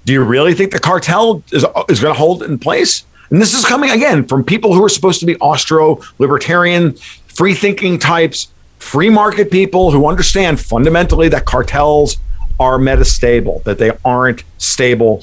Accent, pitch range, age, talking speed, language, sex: American, 120-170 Hz, 50-69, 175 wpm, English, male